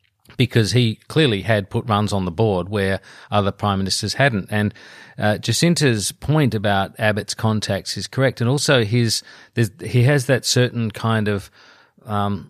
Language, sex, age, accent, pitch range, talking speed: English, male, 40-59, Australian, 100-120 Hz, 170 wpm